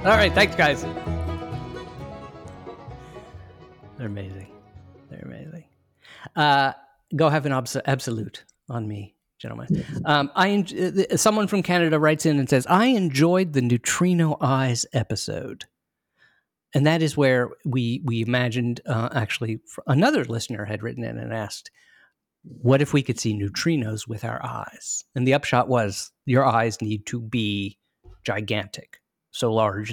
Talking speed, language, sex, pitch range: 140 wpm, English, male, 110-145 Hz